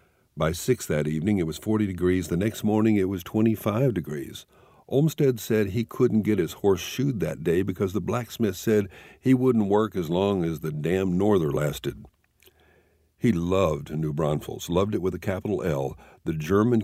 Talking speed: 180 wpm